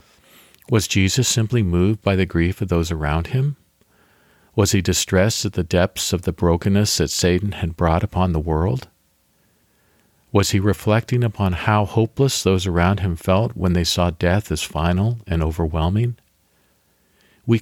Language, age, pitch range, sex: English, 50-69, 85-110 Hz, male